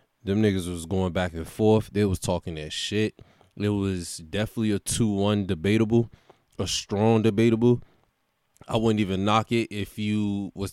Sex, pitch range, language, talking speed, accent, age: male, 95-110 Hz, English, 160 wpm, American, 20-39